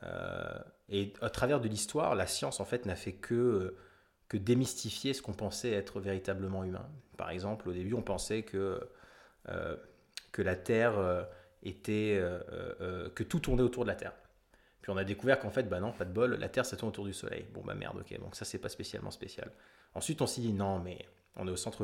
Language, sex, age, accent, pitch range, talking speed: French, male, 20-39, French, 100-130 Hz, 220 wpm